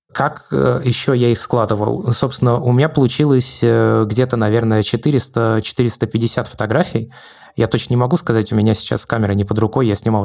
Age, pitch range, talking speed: 20-39, 110-125 Hz, 160 wpm